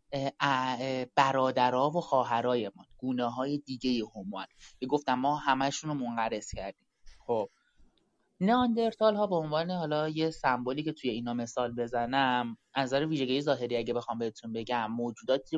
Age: 20-39